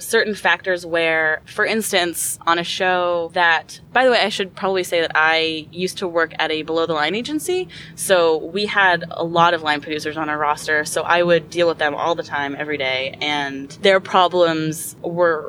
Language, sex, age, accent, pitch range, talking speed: English, female, 20-39, American, 155-185 Hz, 205 wpm